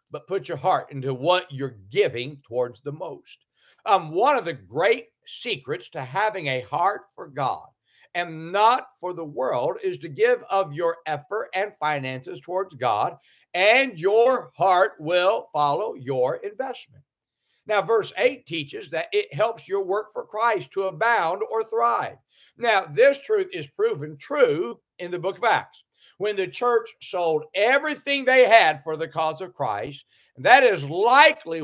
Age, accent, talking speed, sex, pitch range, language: 50-69, American, 165 wpm, male, 160-245 Hz, English